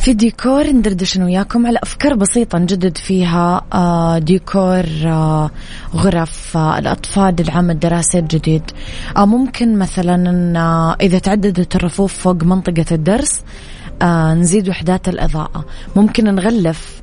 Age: 20-39